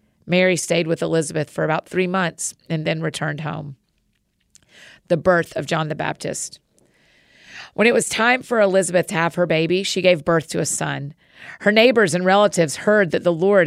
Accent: American